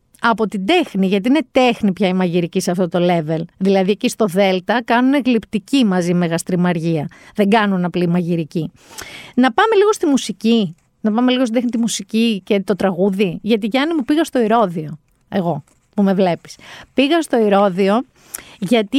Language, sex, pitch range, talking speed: Greek, female, 190-245 Hz, 170 wpm